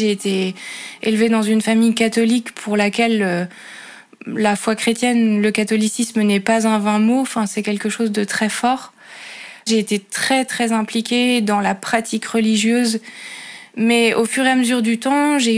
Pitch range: 220-250 Hz